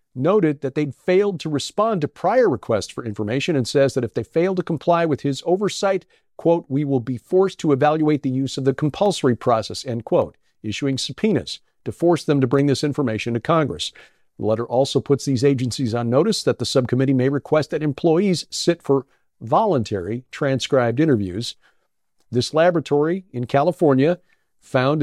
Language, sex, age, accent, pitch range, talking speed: English, male, 50-69, American, 125-160 Hz, 175 wpm